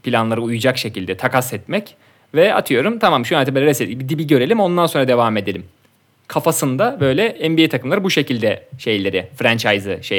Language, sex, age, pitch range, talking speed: Turkish, male, 30-49, 125-170 Hz, 155 wpm